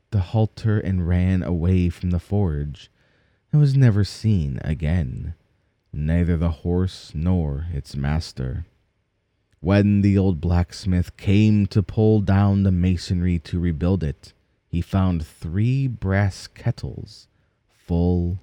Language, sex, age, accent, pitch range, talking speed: English, male, 30-49, American, 85-110 Hz, 125 wpm